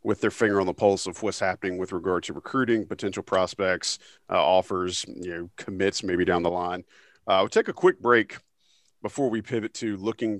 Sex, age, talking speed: male, 40-59, 200 wpm